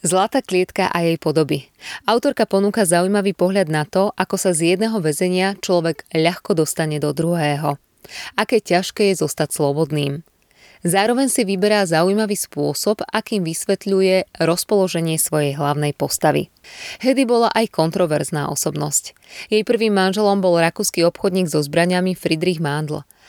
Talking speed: 135 wpm